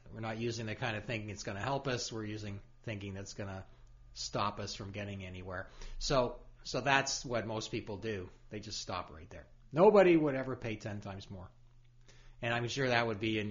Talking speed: 220 wpm